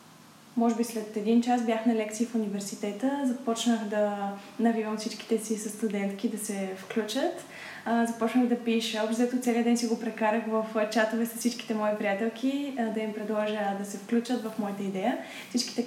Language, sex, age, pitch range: Bulgarian, female, 10-29, 210-235 Hz